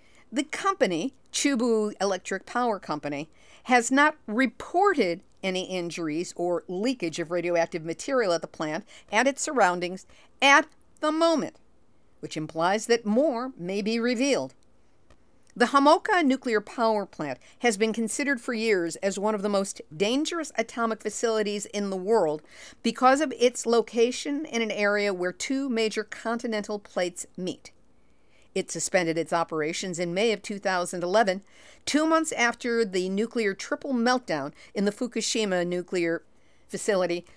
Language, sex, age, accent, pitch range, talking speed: English, female, 50-69, American, 180-245 Hz, 140 wpm